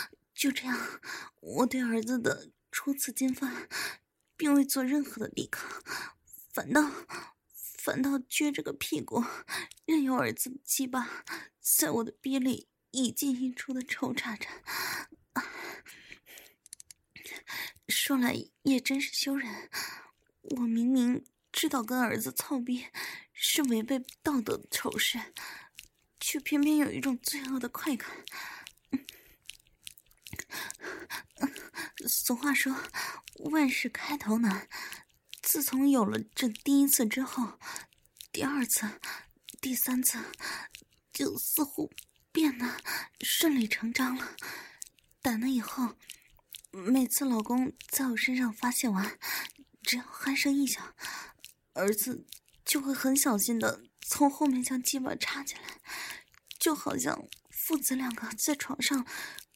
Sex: female